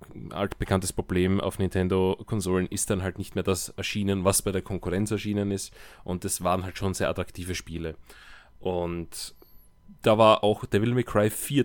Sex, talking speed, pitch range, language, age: male, 175 wpm, 90-105 Hz, German, 20-39